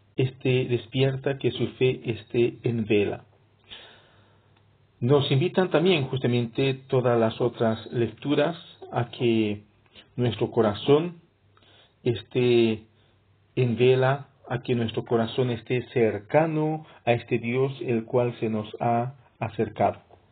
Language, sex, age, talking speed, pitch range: English, male, 50-69, 110 wpm, 110-135 Hz